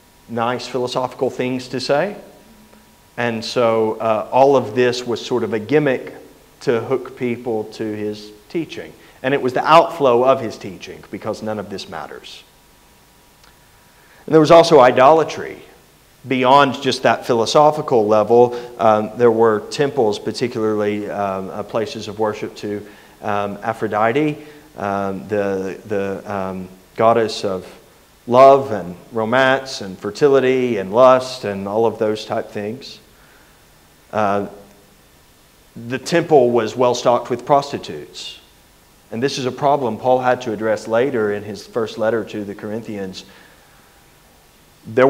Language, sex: English, male